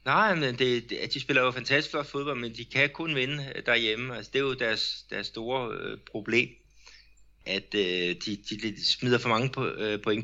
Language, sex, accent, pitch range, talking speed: Danish, male, native, 95-120 Hz, 200 wpm